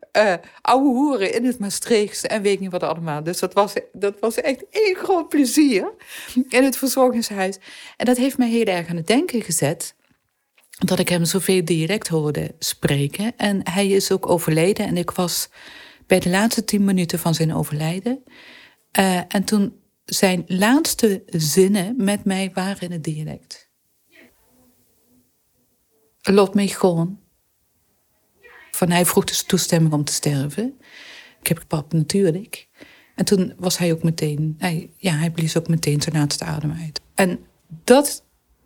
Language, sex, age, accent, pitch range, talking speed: Dutch, female, 40-59, Dutch, 165-215 Hz, 160 wpm